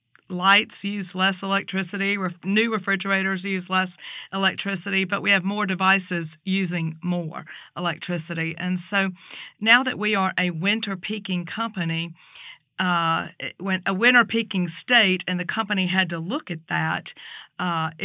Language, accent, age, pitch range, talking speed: English, American, 50-69, 170-195 Hz, 145 wpm